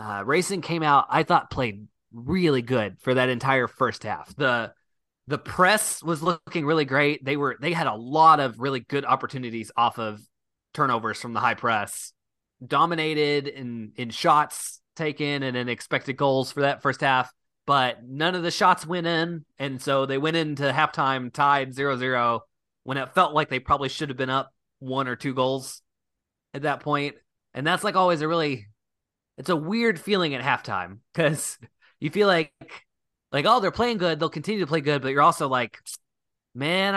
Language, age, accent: English, 20-39, American